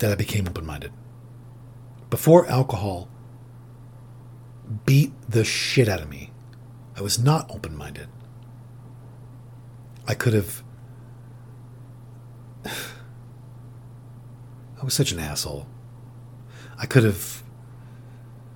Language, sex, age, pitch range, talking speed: English, male, 40-59, 120-125 Hz, 85 wpm